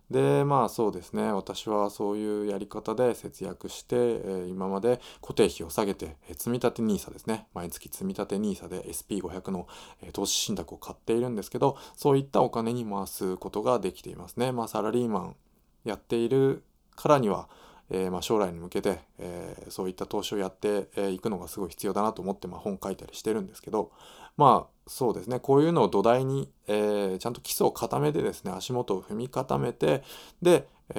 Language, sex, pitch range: Japanese, male, 95-125 Hz